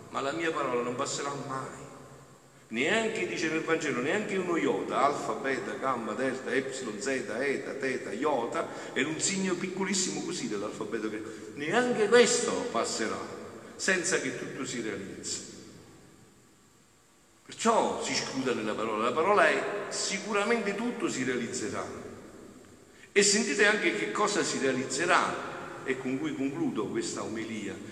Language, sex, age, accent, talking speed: Italian, male, 50-69, native, 135 wpm